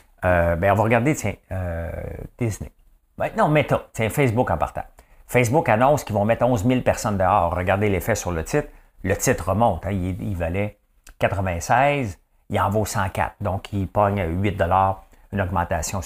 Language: English